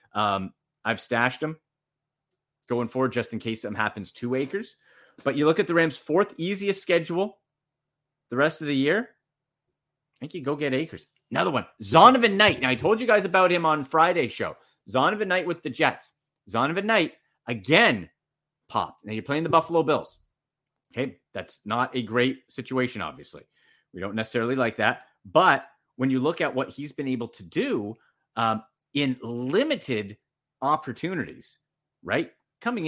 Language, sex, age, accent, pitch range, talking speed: English, male, 30-49, American, 120-160 Hz, 165 wpm